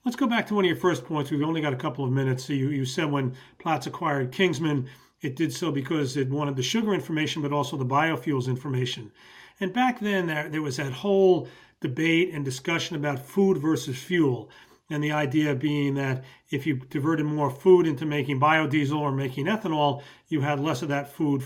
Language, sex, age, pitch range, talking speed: English, male, 40-59, 145-185 Hz, 210 wpm